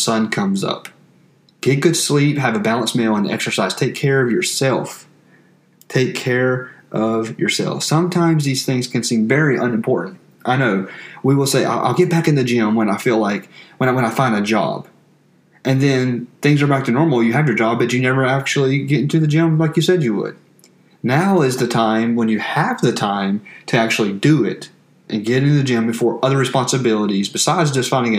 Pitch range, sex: 115-145 Hz, male